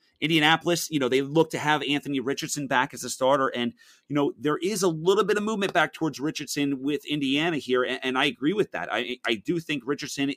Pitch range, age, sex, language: 125-155 Hz, 30-49, male, English